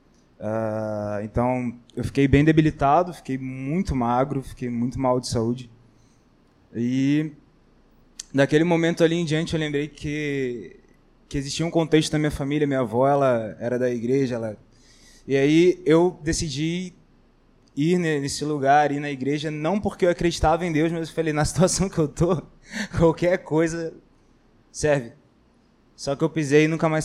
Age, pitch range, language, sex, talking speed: 20-39, 135-160 Hz, Portuguese, male, 155 wpm